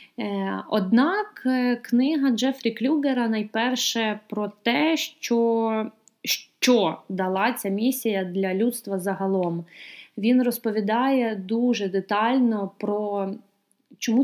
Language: Ukrainian